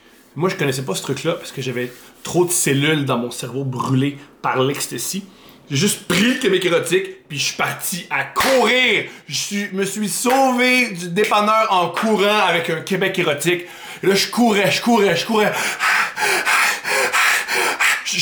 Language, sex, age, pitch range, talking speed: French, male, 30-49, 145-215 Hz, 170 wpm